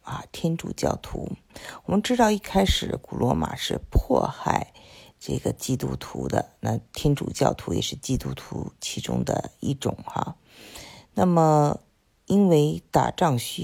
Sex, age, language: female, 50-69, Chinese